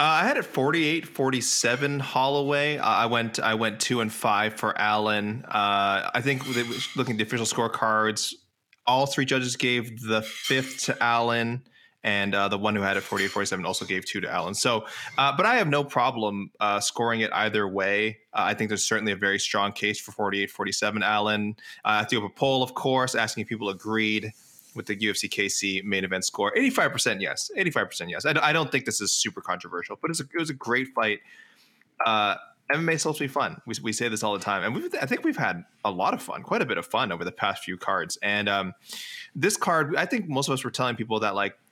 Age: 20-39